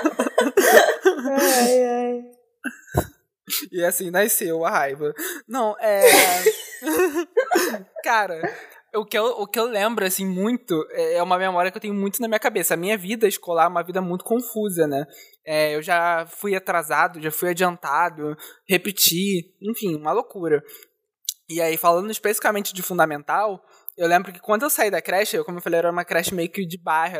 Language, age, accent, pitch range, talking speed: Portuguese, 20-39, Brazilian, 170-220 Hz, 155 wpm